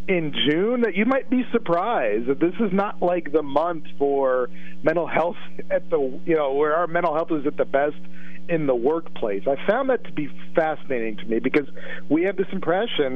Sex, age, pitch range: male, 40-59, 130-175 Hz